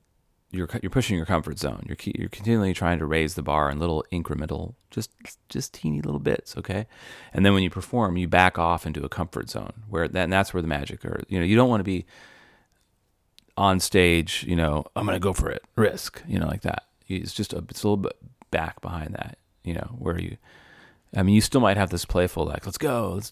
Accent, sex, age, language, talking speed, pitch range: American, male, 30-49, English, 235 wpm, 85-105 Hz